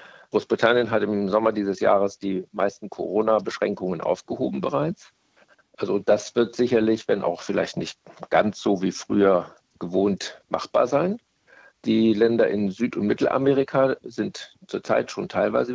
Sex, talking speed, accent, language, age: male, 135 wpm, German, German, 50-69